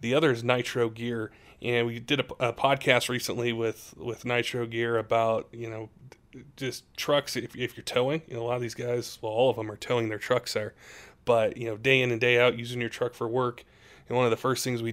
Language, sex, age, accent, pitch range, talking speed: English, male, 20-39, American, 115-130 Hz, 245 wpm